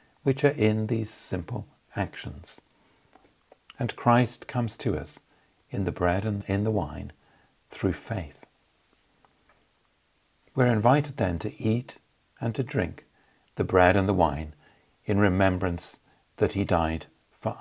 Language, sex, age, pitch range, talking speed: English, male, 50-69, 90-110 Hz, 135 wpm